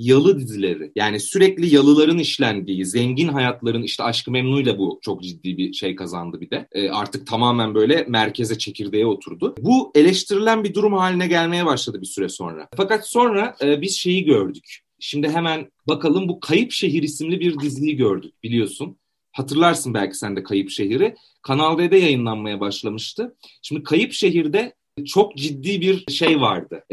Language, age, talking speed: Turkish, 40-59, 160 wpm